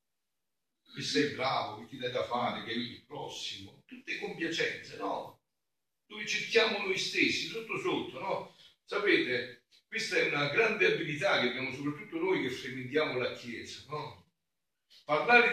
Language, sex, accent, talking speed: Italian, male, native, 145 wpm